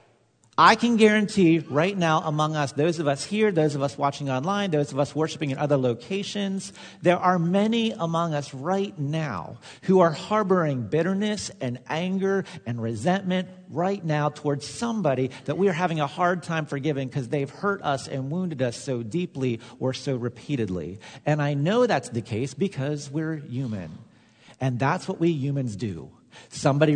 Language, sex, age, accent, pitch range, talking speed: English, male, 40-59, American, 130-185 Hz, 175 wpm